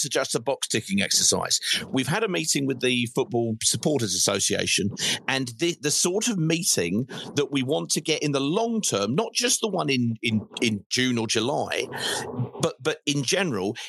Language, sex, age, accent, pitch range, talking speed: English, male, 40-59, British, 115-150 Hz, 175 wpm